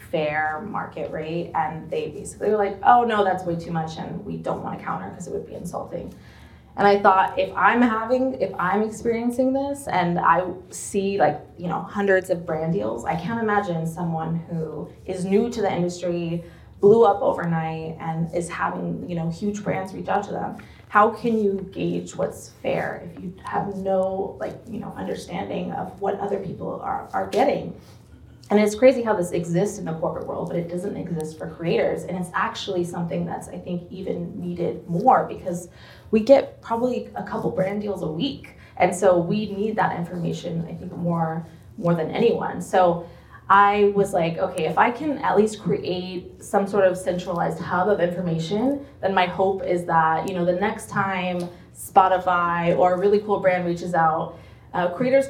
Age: 20-39